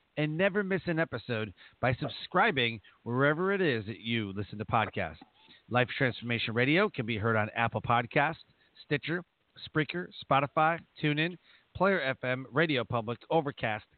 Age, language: 40-59, English